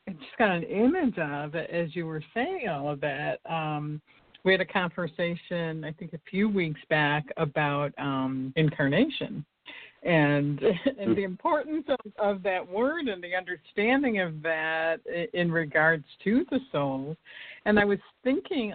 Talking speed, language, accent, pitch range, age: 160 wpm, English, American, 155-205 Hz, 50-69